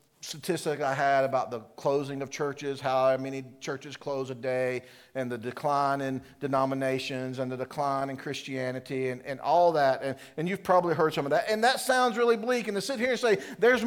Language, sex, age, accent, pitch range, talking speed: English, male, 50-69, American, 130-205 Hz, 210 wpm